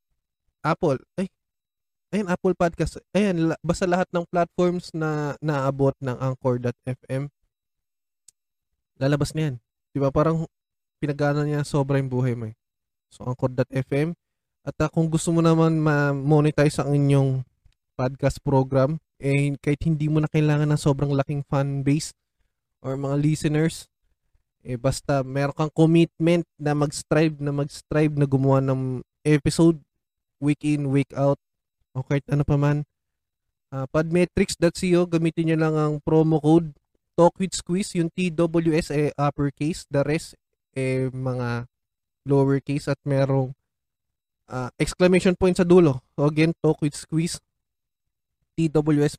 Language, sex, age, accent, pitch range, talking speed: Filipino, male, 20-39, native, 135-160 Hz, 120 wpm